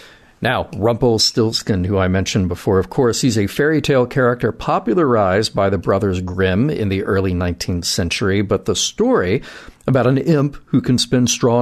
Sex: male